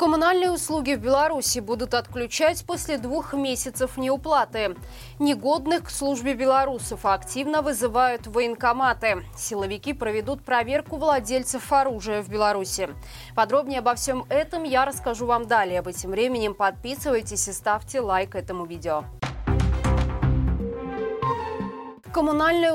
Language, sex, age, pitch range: Russian, female, 20-39, 220-290 Hz